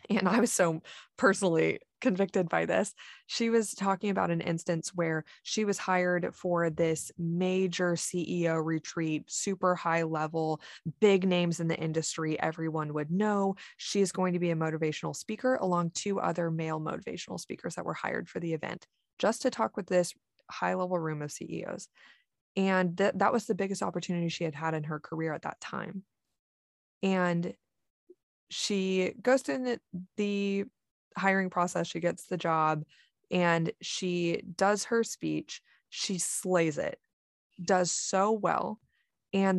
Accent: American